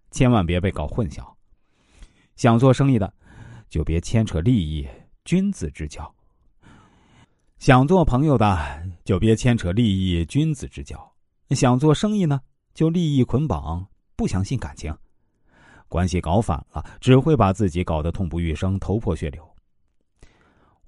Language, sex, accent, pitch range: Chinese, male, native, 85-120 Hz